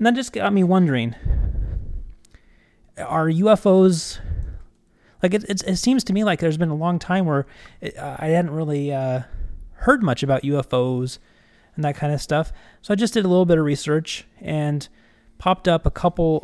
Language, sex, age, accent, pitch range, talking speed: English, male, 30-49, American, 125-170 Hz, 185 wpm